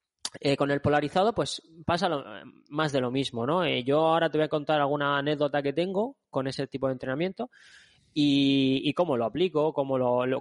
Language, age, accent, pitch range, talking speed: Spanish, 20-39, Spanish, 125-150 Hz, 210 wpm